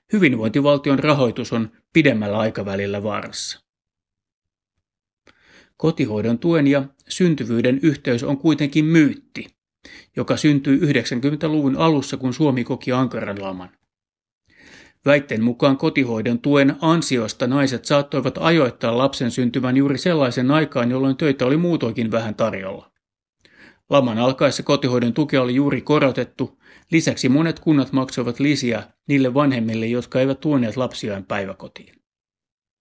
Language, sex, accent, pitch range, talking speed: Finnish, male, native, 115-145 Hz, 110 wpm